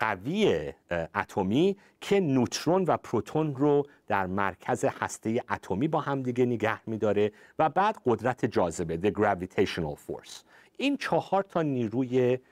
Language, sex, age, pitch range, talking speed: Persian, male, 50-69, 110-160 Hz, 130 wpm